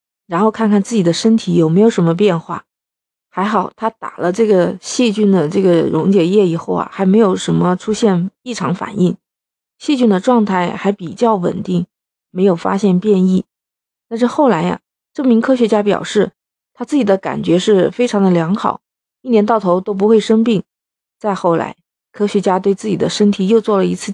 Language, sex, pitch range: Chinese, female, 180-220 Hz